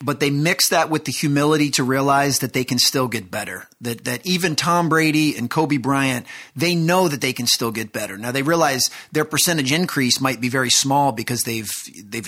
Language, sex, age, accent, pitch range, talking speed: English, male, 30-49, American, 125-155 Hz, 215 wpm